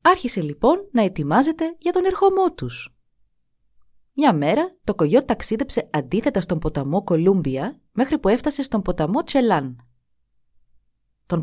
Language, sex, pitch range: Greek, female, 150-240 Hz